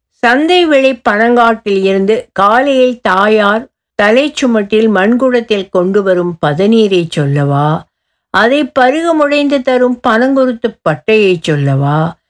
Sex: female